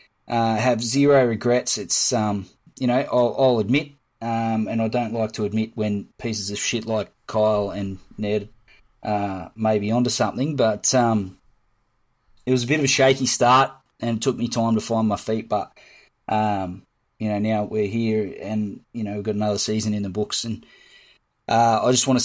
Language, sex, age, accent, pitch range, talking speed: English, male, 20-39, Australian, 110-130 Hz, 190 wpm